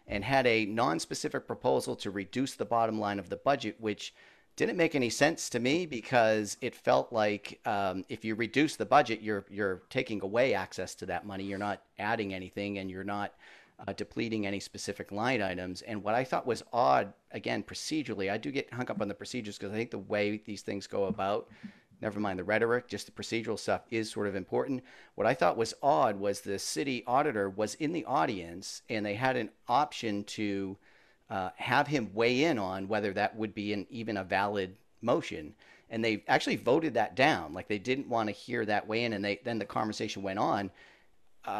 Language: English